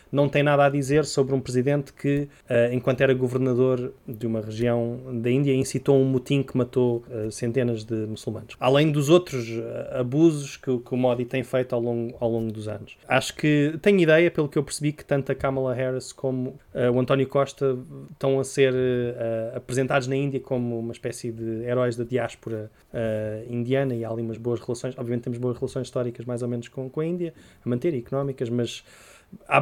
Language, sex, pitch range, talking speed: English, male, 120-140 Hz, 205 wpm